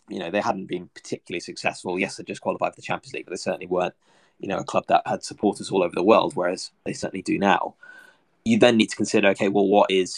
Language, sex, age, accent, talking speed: English, male, 20-39, British, 260 wpm